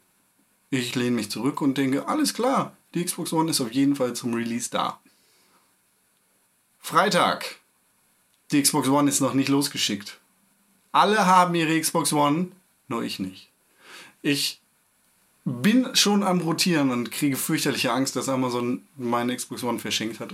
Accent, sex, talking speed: German, male, 150 wpm